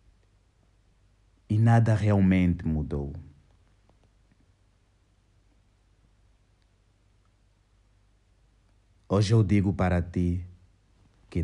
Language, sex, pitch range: Portuguese, male, 90-105 Hz